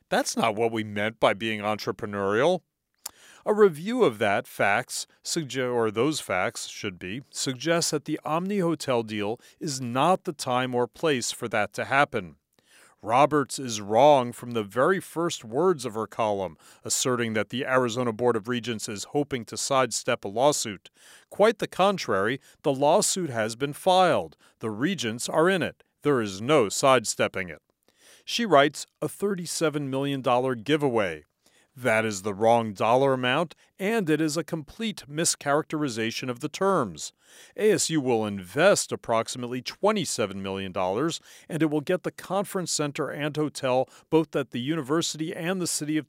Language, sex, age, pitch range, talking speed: English, male, 40-59, 115-160 Hz, 155 wpm